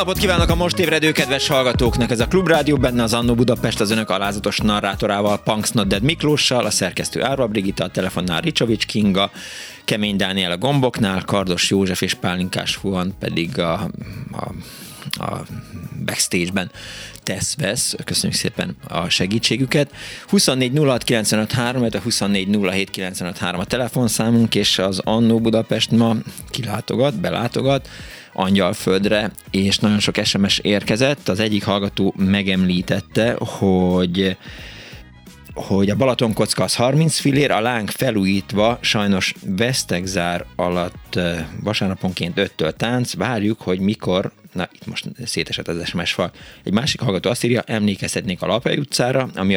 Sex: male